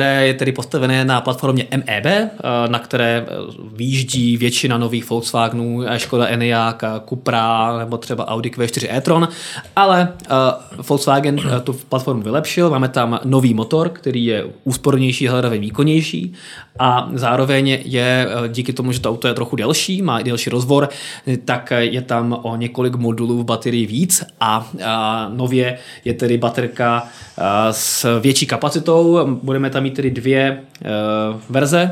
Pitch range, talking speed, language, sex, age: 120-145 Hz, 135 wpm, Czech, male, 20-39